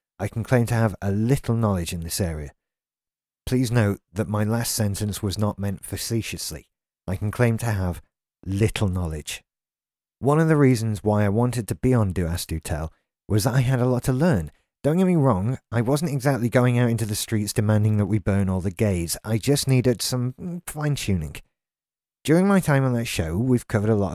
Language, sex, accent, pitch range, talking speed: English, male, British, 95-125 Hz, 210 wpm